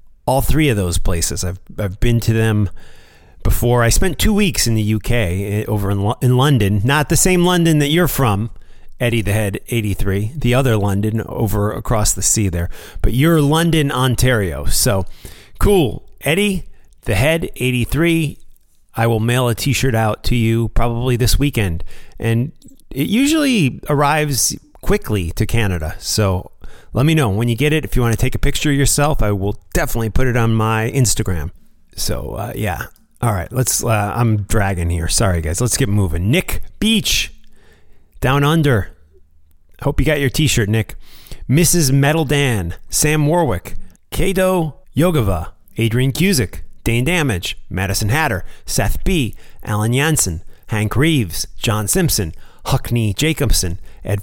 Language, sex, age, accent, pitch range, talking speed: English, male, 30-49, American, 95-140 Hz, 165 wpm